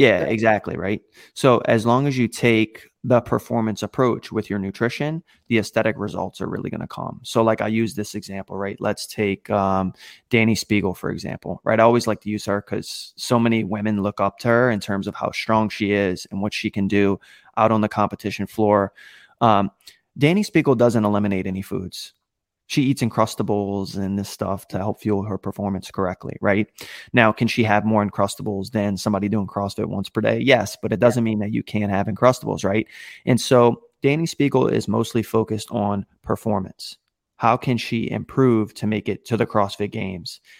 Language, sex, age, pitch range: English, male, 20-39, 100-115 Hz